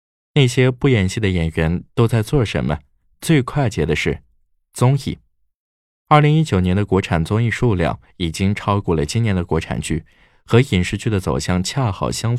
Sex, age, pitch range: male, 20-39, 80-120 Hz